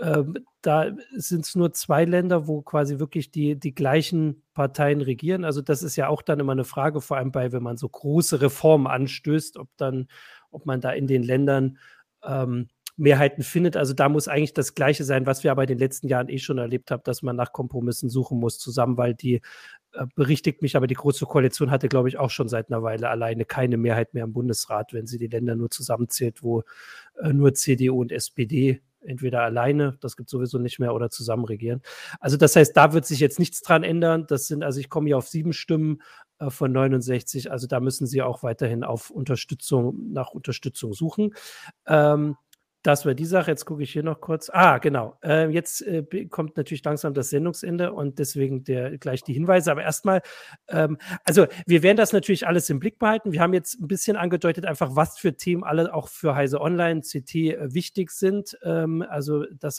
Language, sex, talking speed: German, male, 205 wpm